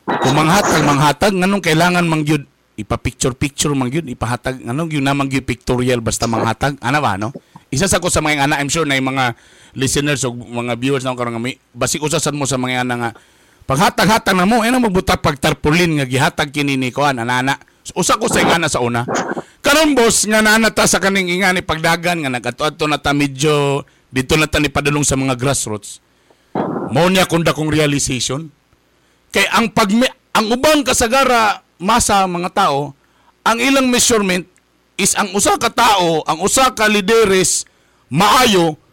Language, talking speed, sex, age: Filipino, 170 wpm, male, 50-69